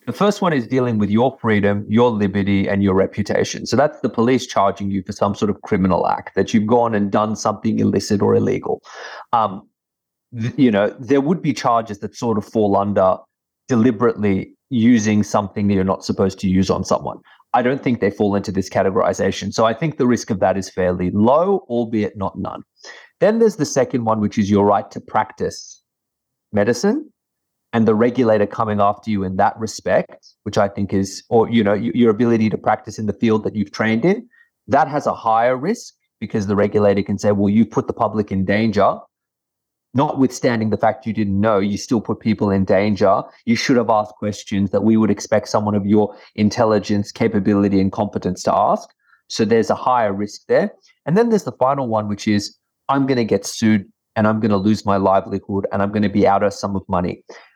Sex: male